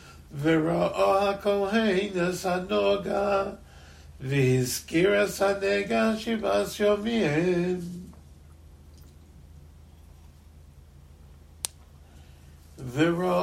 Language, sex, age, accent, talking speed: English, male, 60-79, American, 45 wpm